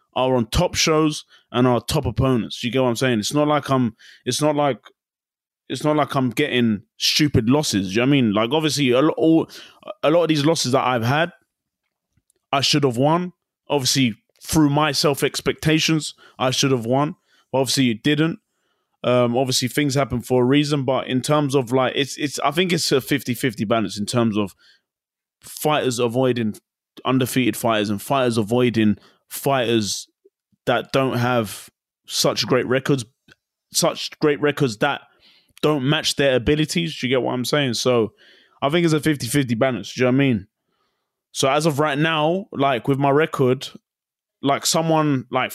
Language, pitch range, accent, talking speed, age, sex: German, 120-150 Hz, British, 180 wpm, 20-39, male